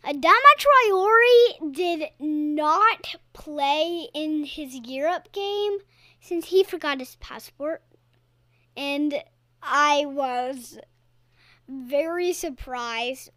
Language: English